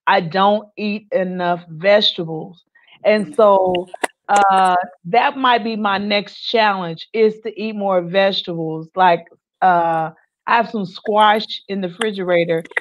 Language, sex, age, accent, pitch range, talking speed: English, female, 30-49, American, 185-230 Hz, 130 wpm